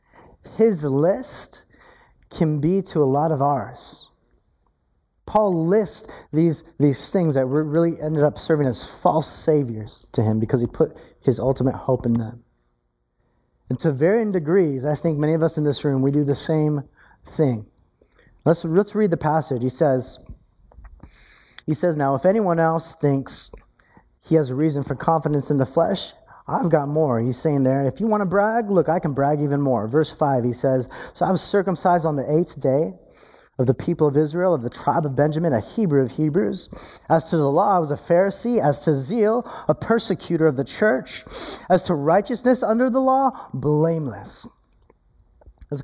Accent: American